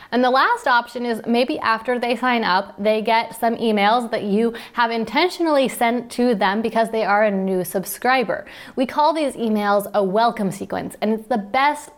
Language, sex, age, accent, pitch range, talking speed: English, female, 20-39, American, 200-250 Hz, 190 wpm